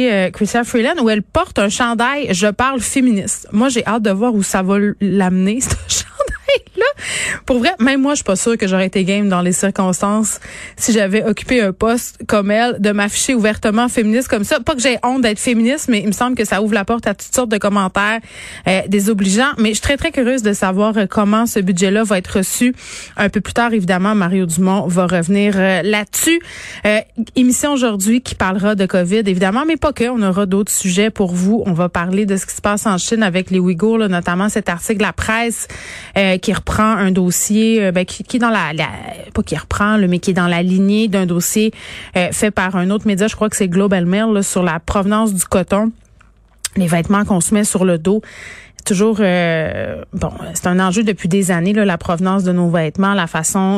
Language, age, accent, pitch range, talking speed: French, 30-49, Canadian, 185-225 Hz, 225 wpm